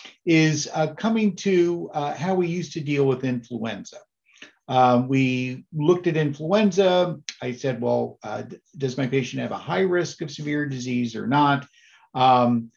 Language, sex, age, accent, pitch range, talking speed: English, male, 50-69, American, 130-165 Hz, 165 wpm